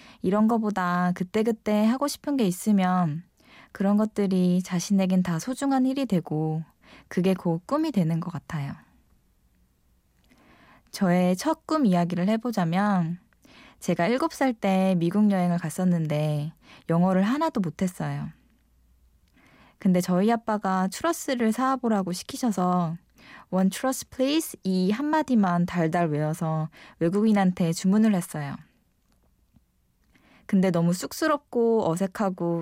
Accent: native